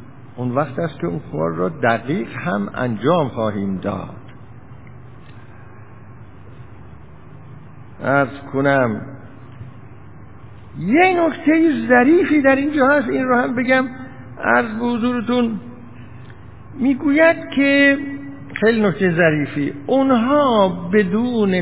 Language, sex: Persian, male